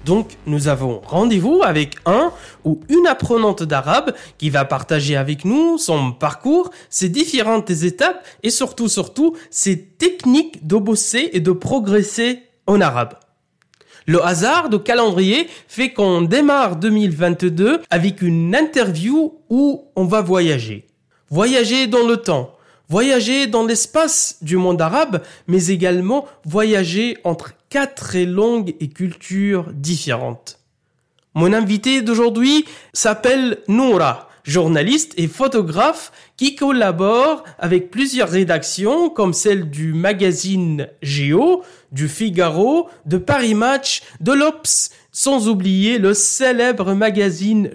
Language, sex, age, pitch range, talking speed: French, male, 20-39, 165-240 Hz, 120 wpm